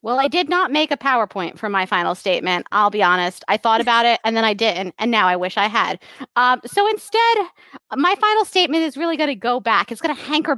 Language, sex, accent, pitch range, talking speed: English, female, American, 235-360 Hz, 250 wpm